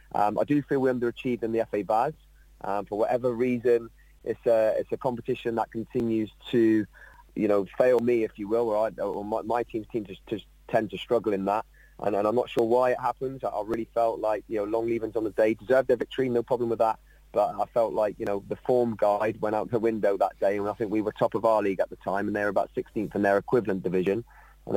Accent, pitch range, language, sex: British, 100-120 Hz, English, male